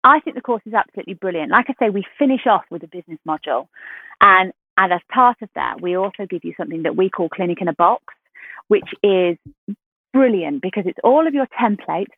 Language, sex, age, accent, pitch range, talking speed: English, female, 30-49, British, 175-230 Hz, 215 wpm